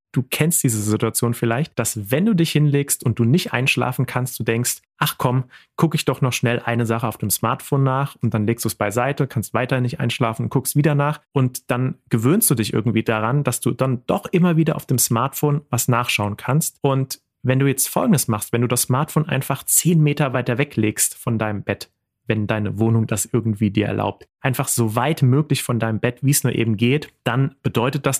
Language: German